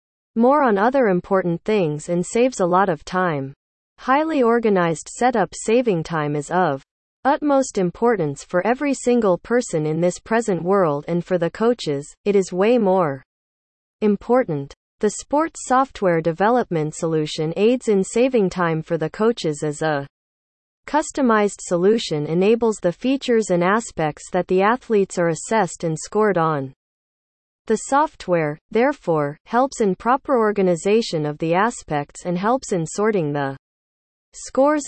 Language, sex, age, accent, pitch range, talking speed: English, female, 30-49, American, 160-230 Hz, 140 wpm